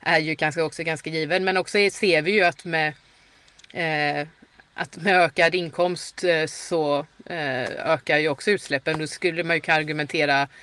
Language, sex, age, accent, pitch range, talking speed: Swedish, female, 30-49, native, 155-185 Hz, 170 wpm